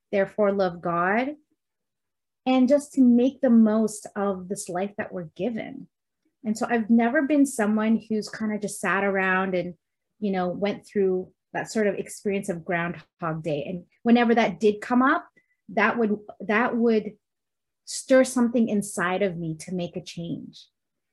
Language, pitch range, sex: English, 195-240 Hz, female